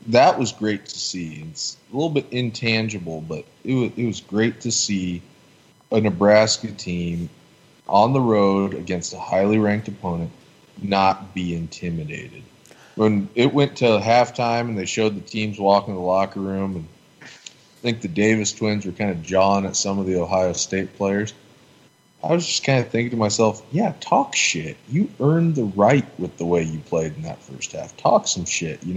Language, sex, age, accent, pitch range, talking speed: English, male, 20-39, American, 95-120 Hz, 190 wpm